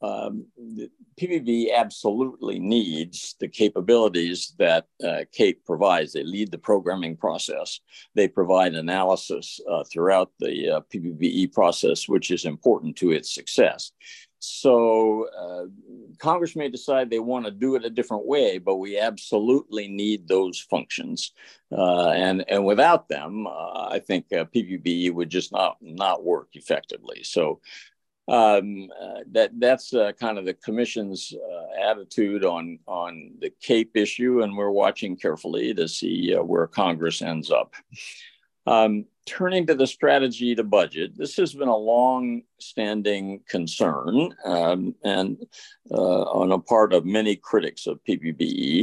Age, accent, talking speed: 50-69, American, 145 wpm